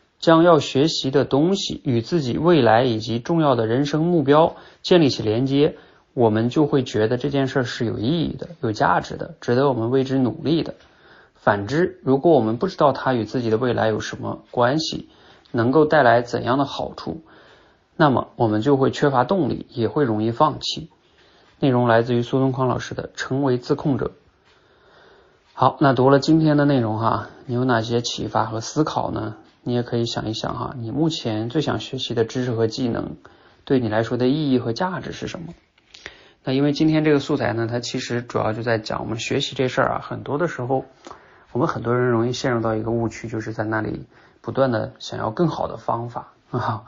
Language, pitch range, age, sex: Chinese, 115-145 Hz, 30-49, male